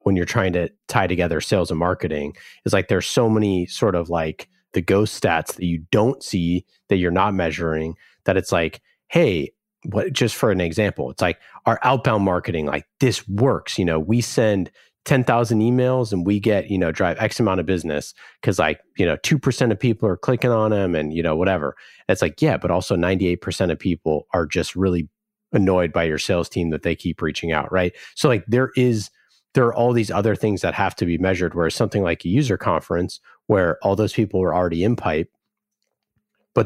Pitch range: 85-115 Hz